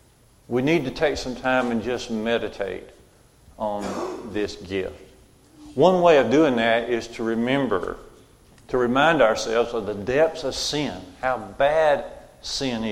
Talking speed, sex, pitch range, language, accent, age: 145 wpm, male, 120-145 Hz, English, American, 50-69